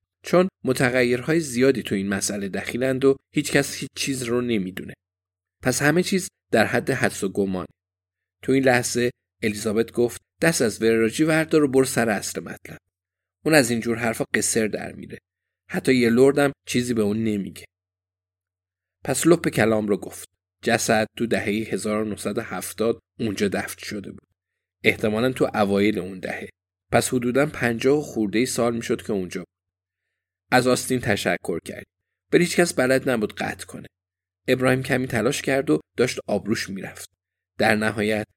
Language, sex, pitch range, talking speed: Persian, male, 95-130 Hz, 155 wpm